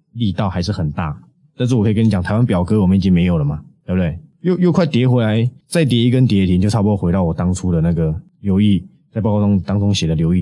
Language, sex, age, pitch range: Chinese, male, 20-39, 90-125 Hz